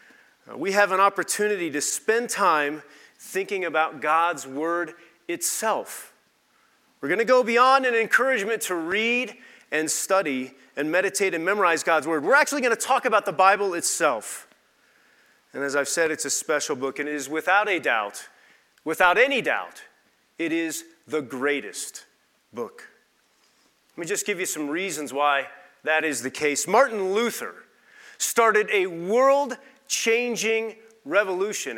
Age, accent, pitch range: 40-59, American, 155-245 Hz